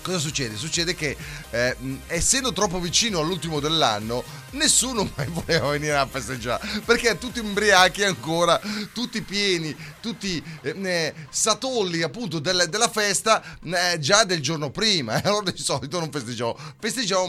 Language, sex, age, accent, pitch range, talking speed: Italian, male, 30-49, native, 140-200 Hz, 140 wpm